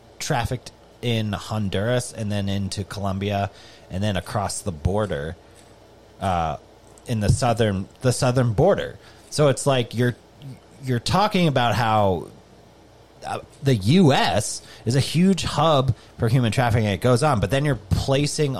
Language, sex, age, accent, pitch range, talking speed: English, male, 30-49, American, 100-125 Hz, 140 wpm